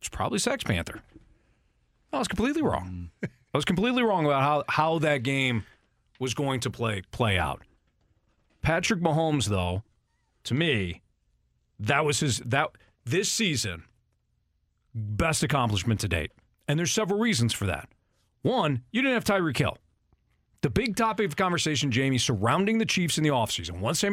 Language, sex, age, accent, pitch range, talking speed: English, male, 40-59, American, 110-165 Hz, 165 wpm